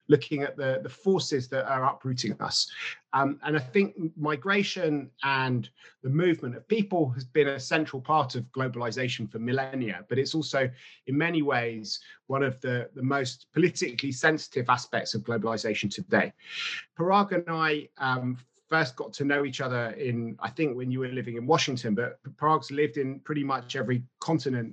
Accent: British